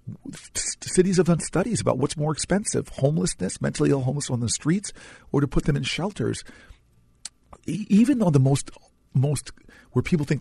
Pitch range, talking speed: 115-155 Hz, 165 wpm